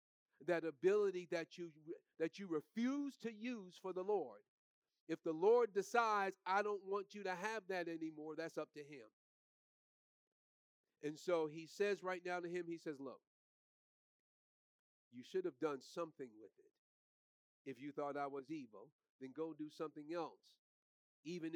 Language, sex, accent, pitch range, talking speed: English, male, American, 135-180 Hz, 160 wpm